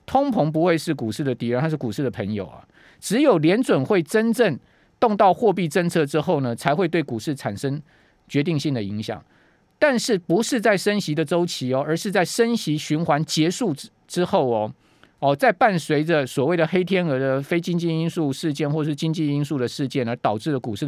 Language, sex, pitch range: Chinese, male, 130-170 Hz